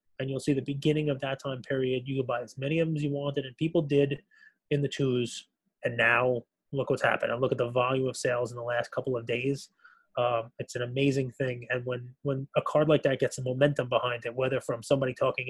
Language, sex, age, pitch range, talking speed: English, male, 20-39, 120-150 Hz, 250 wpm